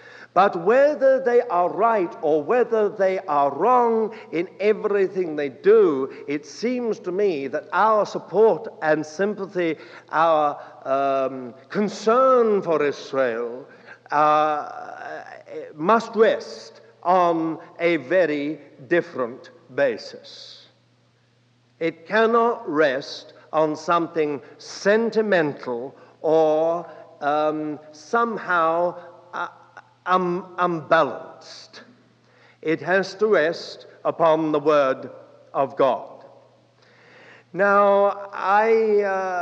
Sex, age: male, 60-79